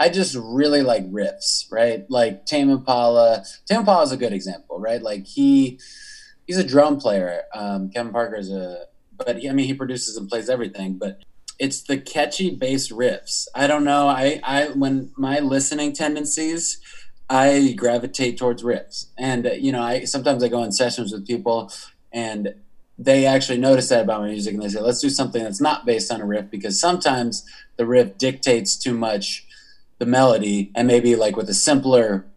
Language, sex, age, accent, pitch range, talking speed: English, male, 20-39, American, 115-140 Hz, 190 wpm